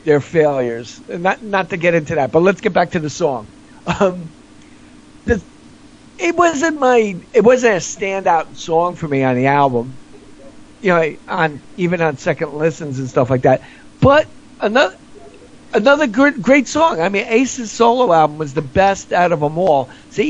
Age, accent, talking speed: 50-69, American, 180 wpm